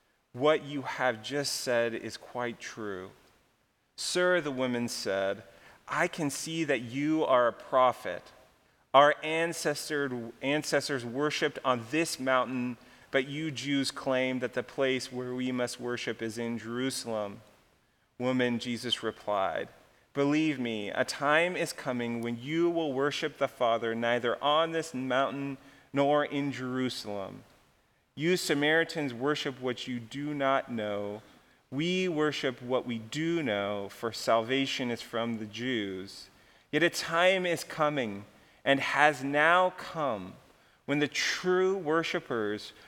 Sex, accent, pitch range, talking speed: male, American, 120-150 Hz, 135 wpm